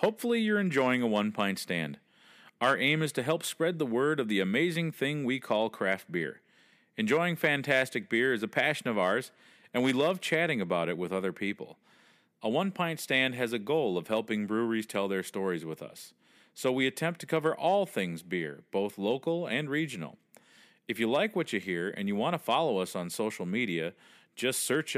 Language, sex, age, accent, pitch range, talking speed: English, male, 40-59, American, 105-165 Hz, 195 wpm